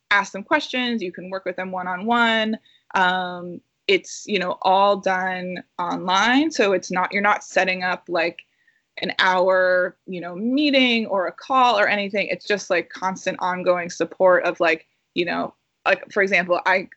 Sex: female